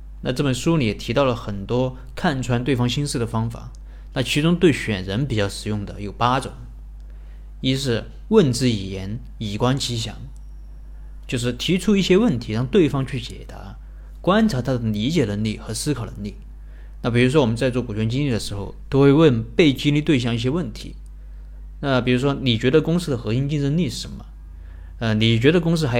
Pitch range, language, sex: 100-130 Hz, Chinese, male